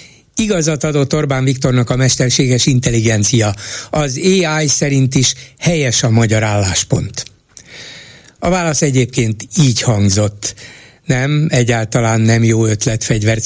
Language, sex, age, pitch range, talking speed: Hungarian, male, 60-79, 115-150 Hz, 110 wpm